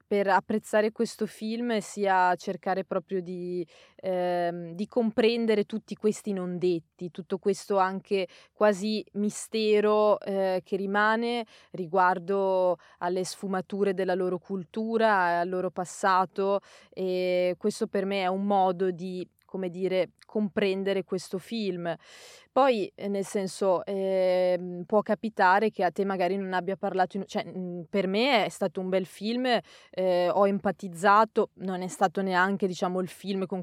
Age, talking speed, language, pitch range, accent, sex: 20-39, 135 wpm, Italian, 185-210 Hz, native, female